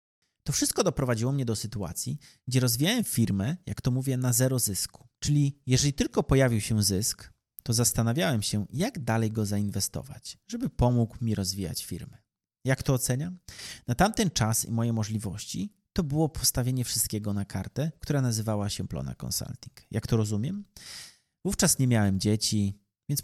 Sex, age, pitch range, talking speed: male, 30-49, 105-140 Hz, 160 wpm